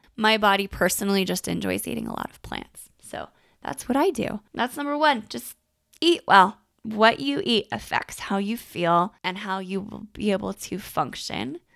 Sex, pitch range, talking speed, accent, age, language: female, 200-265 Hz, 185 wpm, American, 20-39, English